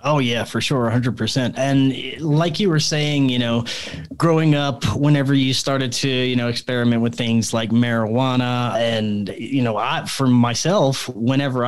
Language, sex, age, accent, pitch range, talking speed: English, male, 30-49, American, 115-140 Hz, 165 wpm